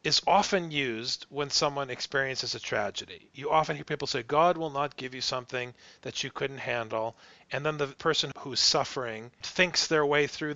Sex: male